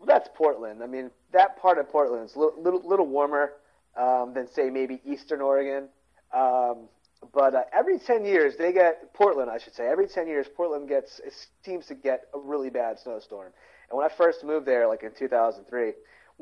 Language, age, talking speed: English, 30-49, 195 wpm